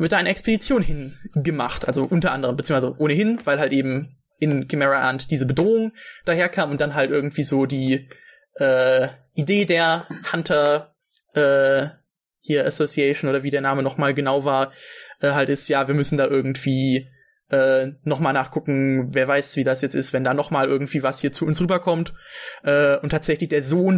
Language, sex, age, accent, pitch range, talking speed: German, male, 20-39, German, 140-200 Hz, 175 wpm